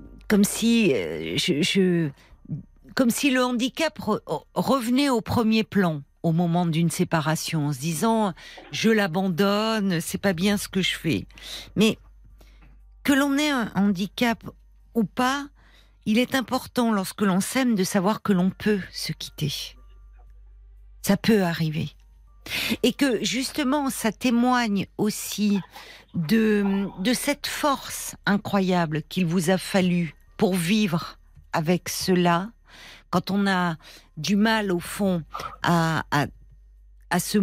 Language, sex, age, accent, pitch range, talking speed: French, female, 50-69, French, 170-225 Hz, 140 wpm